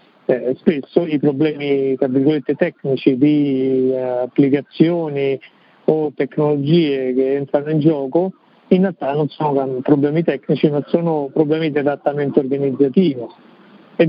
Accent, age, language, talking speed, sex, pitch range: native, 50-69, Italian, 115 wpm, male, 140-175 Hz